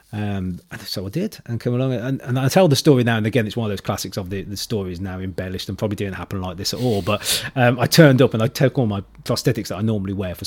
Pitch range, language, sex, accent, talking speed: 95-120 Hz, English, male, British, 290 wpm